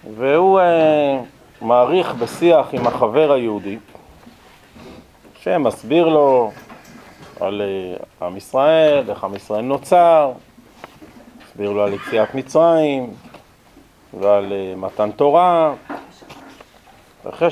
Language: Hebrew